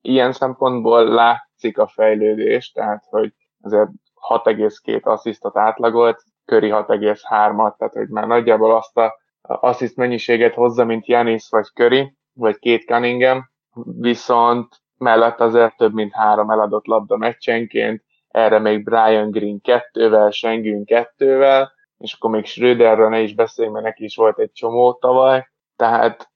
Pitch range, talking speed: 110-125 Hz, 135 wpm